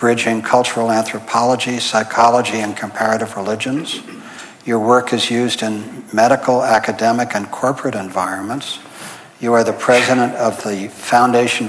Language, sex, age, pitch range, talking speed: English, male, 60-79, 110-125 Hz, 125 wpm